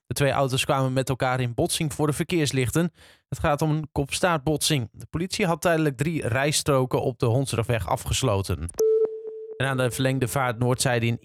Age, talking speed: 20-39, 170 wpm